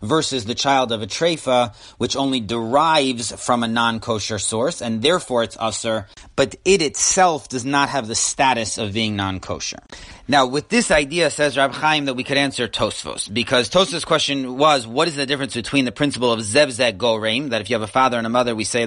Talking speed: 205 wpm